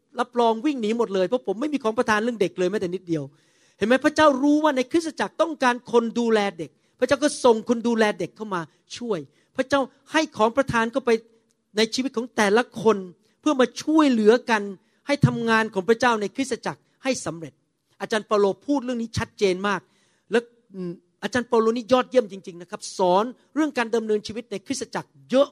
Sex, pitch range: male, 185-240 Hz